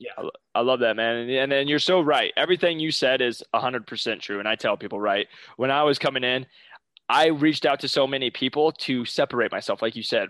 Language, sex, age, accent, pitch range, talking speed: English, male, 20-39, American, 115-150 Hz, 250 wpm